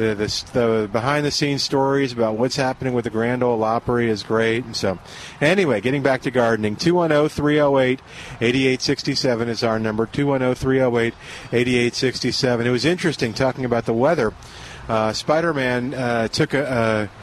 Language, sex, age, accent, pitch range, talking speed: English, male, 40-59, American, 115-140 Hz, 140 wpm